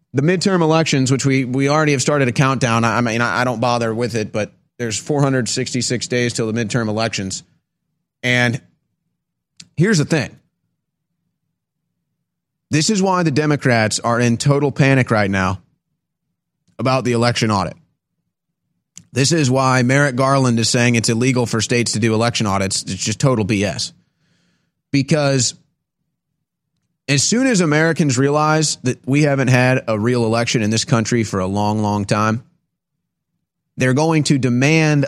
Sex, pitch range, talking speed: male, 115-145 Hz, 150 wpm